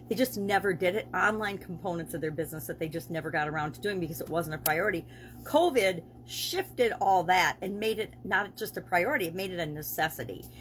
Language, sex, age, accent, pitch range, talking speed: English, female, 40-59, American, 170-215 Hz, 220 wpm